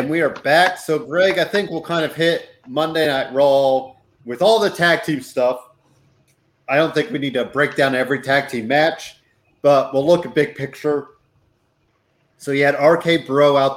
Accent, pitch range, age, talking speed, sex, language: American, 130-160 Hz, 30-49, 195 wpm, male, English